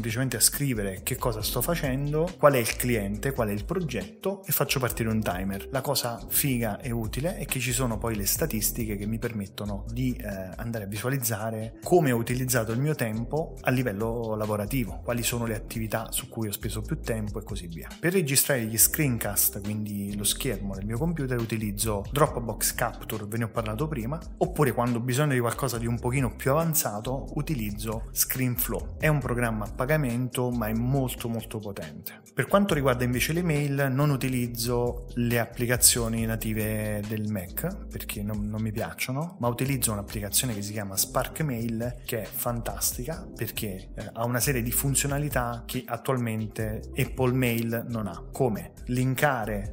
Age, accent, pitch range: 30-49, native, 110-130 Hz